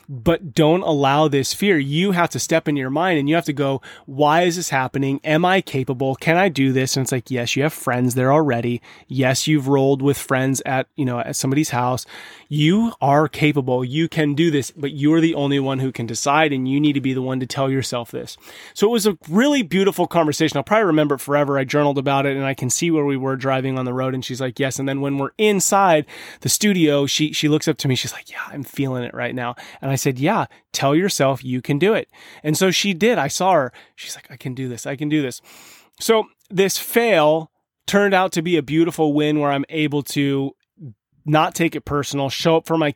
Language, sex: English, male